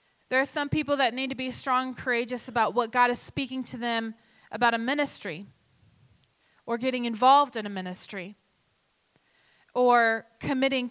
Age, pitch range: 30-49, 225-265 Hz